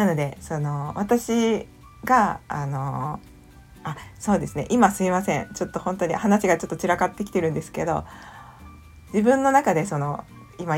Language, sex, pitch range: Japanese, female, 165-230 Hz